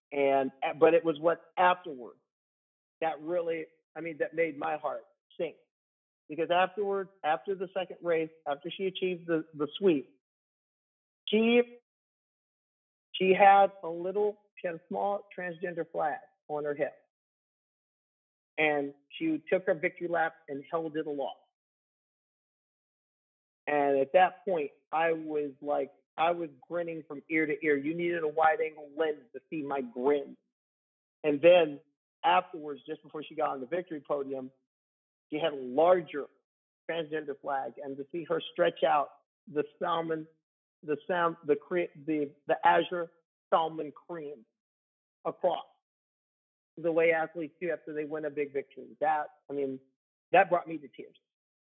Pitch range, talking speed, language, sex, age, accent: 145-175 Hz, 150 wpm, English, male, 50-69, American